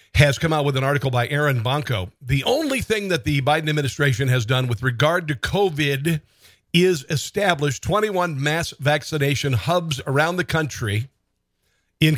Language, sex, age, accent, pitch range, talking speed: English, male, 50-69, American, 125-155 Hz, 160 wpm